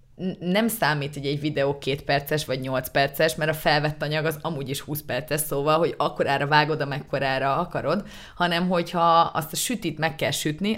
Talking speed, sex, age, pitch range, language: 190 wpm, female, 30-49, 140-170 Hz, Hungarian